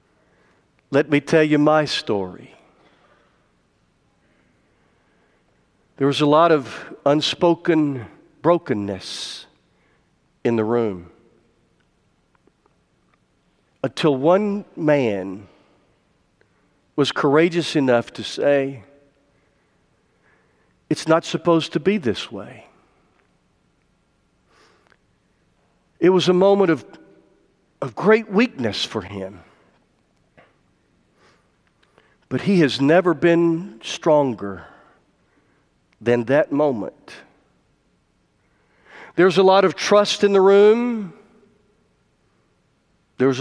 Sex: male